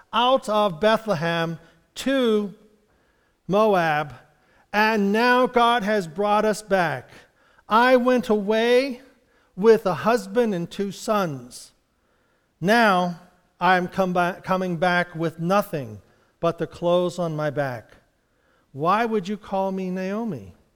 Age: 50-69